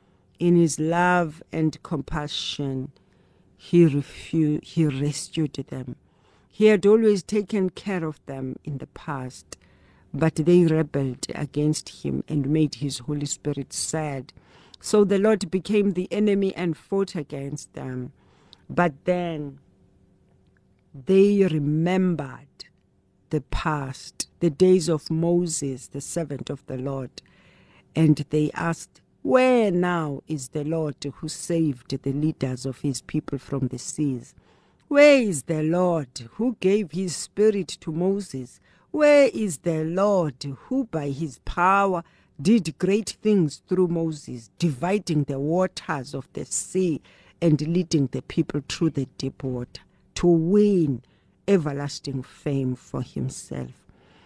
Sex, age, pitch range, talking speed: female, 60-79, 140-180 Hz, 130 wpm